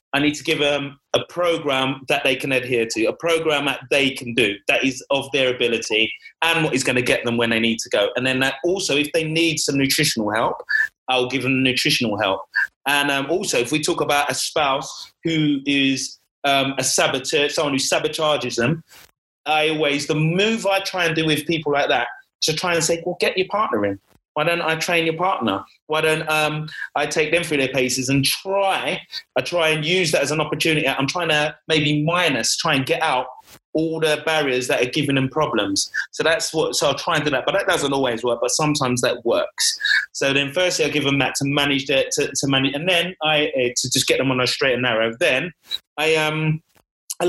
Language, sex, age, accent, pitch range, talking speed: English, male, 30-49, British, 135-165 Hz, 225 wpm